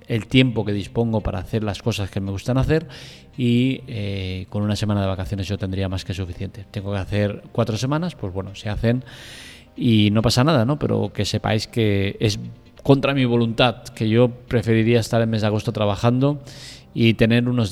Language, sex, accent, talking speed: Spanish, male, Spanish, 195 wpm